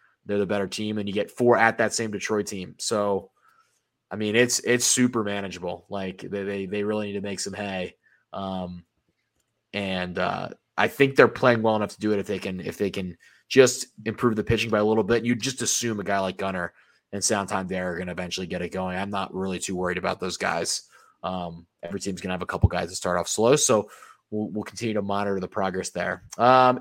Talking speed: 230 wpm